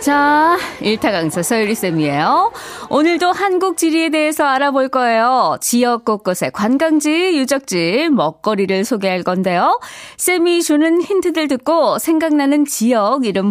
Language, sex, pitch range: Korean, female, 230-330 Hz